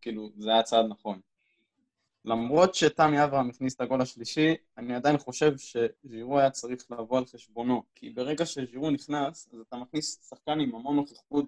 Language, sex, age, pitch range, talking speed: Hebrew, male, 20-39, 115-145 Hz, 165 wpm